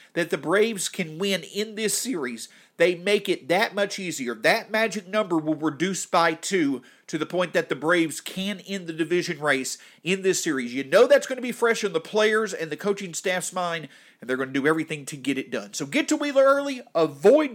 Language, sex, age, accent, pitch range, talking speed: English, male, 40-59, American, 160-230 Hz, 225 wpm